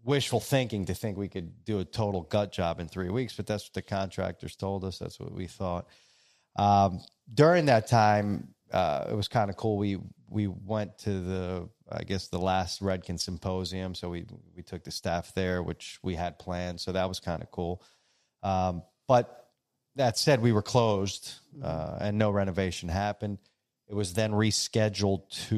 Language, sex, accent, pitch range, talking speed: English, male, American, 90-110 Hz, 190 wpm